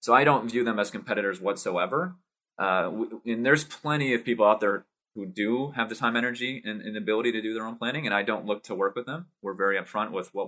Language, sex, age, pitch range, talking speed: English, male, 30-49, 95-115 Hz, 245 wpm